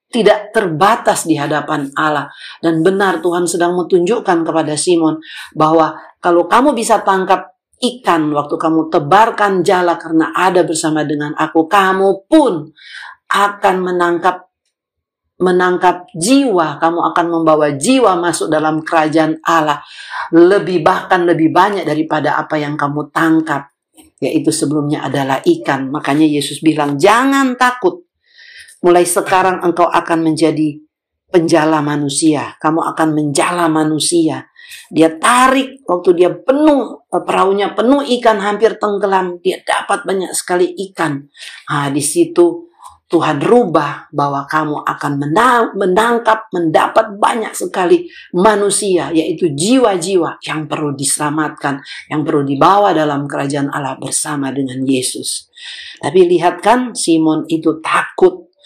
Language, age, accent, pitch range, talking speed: Indonesian, 50-69, native, 155-200 Hz, 120 wpm